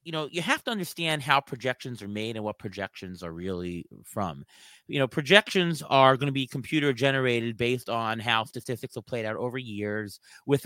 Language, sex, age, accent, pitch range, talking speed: English, male, 30-49, American, 120-155 Hz, 190 wpm